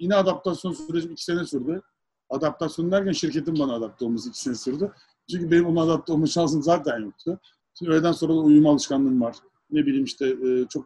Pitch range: 135-185 Hz